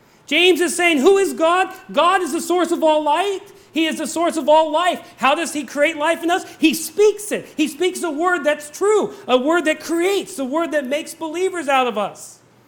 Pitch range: 215-320 Hz